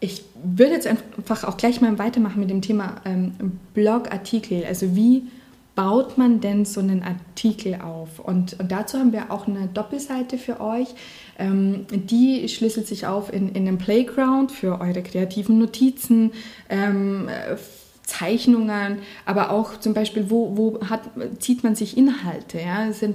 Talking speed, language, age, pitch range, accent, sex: 160 wpm, German, 20-39, 195-230 Hz, German, female